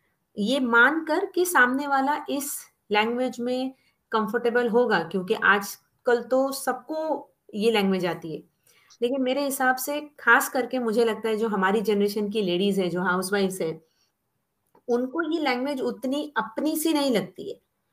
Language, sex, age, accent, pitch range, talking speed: Hindi, female, 30-49, native, 195-275 Hz, 155 wpm